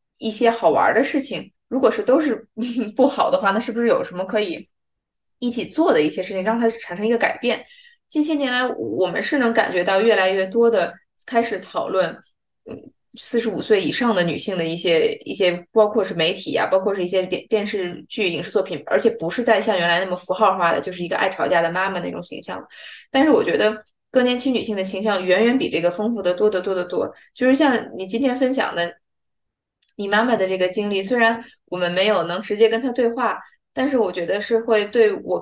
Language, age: Chinese, 20-39